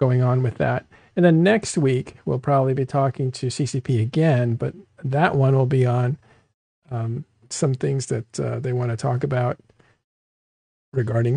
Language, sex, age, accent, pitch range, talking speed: English, male, 50-69, American, 125-160 Hz, 170 wpm